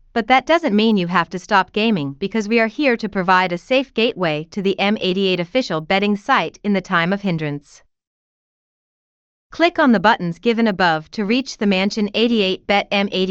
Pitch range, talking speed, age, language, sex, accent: 180-225 Hz, 190 wpm, 30-49, English, female, American